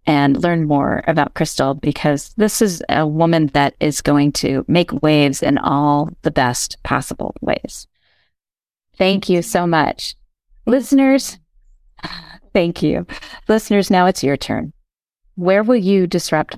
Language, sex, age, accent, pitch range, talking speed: English, female, 40-59, American, 145-185 Hz, 140 wpm